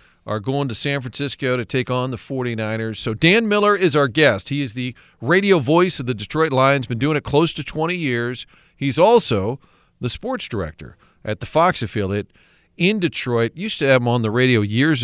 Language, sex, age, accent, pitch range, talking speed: English, male, 40-59, American, 120-155 Hz, 205 wpm